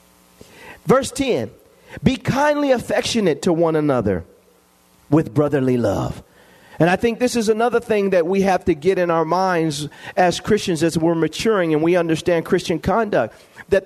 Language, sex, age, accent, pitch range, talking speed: English, male, 40-59, American, 155-205 Hz, 160 wpm